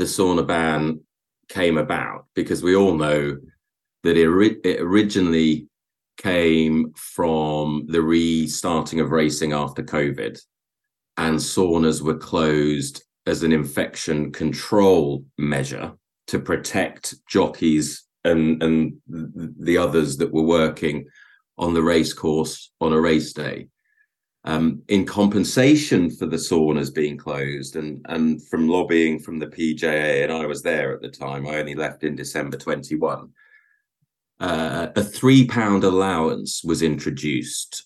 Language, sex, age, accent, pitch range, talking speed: English, male, 30-49, British, 75-95 Hz, 135 wpm